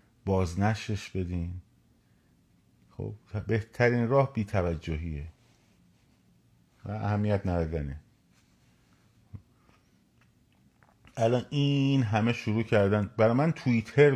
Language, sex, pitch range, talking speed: Persian, male, 85-115 Hz, 75 wpm